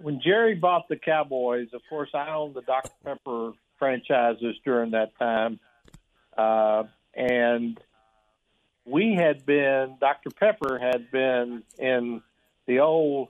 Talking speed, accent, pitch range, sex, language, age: 125 wpm, American, 120-150 Hz, male, English, 60-79